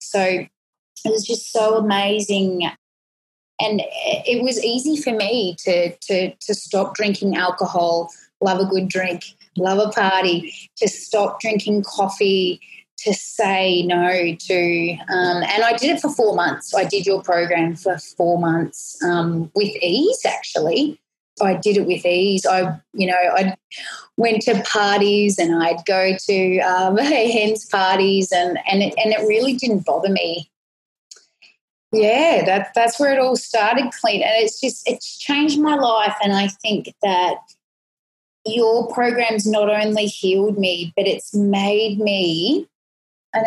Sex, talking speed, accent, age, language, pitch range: female, 155 wpm, Australian, 20-39, English, 180-220 Hz